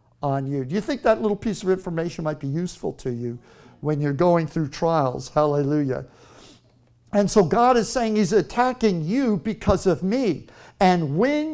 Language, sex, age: English, male, 60-79